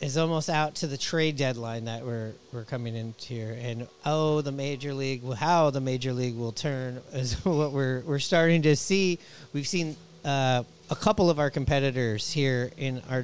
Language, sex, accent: English, male, American